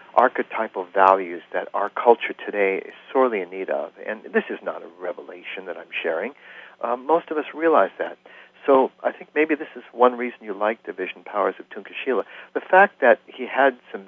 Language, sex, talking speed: English, male, 200 wpm